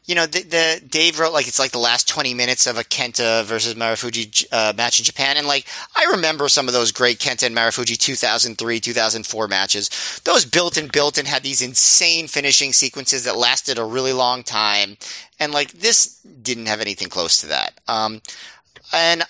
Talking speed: 195 wpm